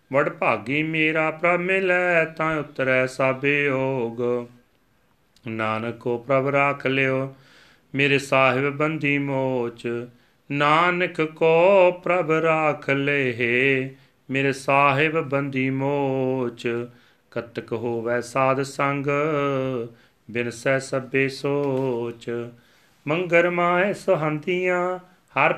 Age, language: 40-59, Punjabi